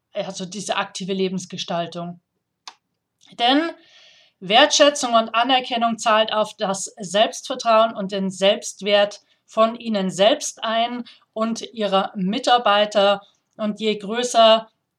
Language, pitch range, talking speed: German, 205-240 Hz, 100 wpm